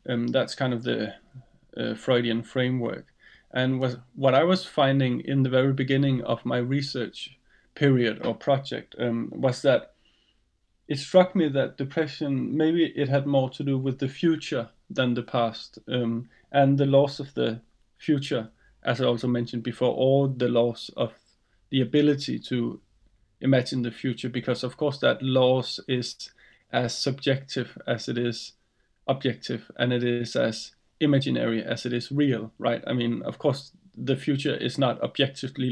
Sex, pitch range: male, 120-140 Hz